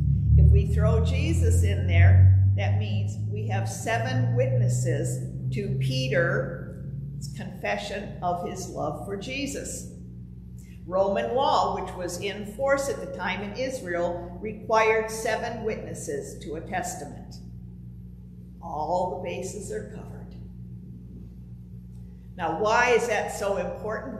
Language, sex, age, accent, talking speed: English, female, 50-69, American, 115 wpm